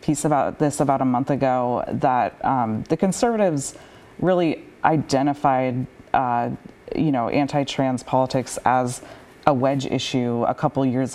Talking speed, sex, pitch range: 140 wpm, female, 125-150 Hz